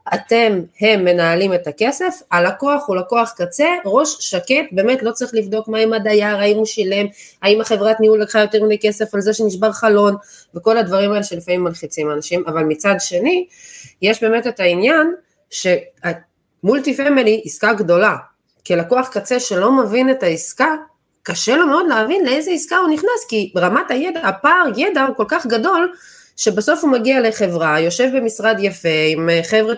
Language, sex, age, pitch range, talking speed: Hebrew, female, 20-39, 185-265 Hz, 165 wpm